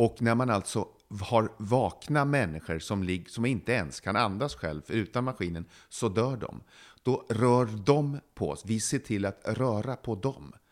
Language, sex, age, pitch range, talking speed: English, male, 40-59, 95-130 Hz, 180 wpm